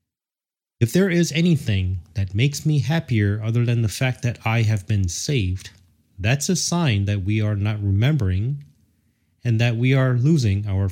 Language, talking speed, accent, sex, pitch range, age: English, 170 wpm, American, male, 100-130 Hz, 30-49